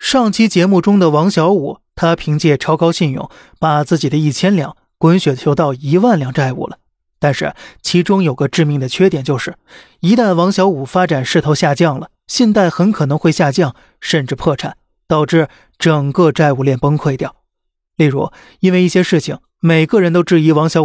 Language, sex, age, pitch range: Chinese, male, 30-49, 150-185 Hz